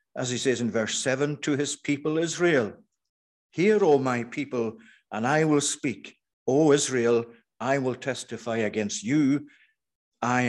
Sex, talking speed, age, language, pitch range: male, 150 wpm, 60-79, English, 120-145 Hz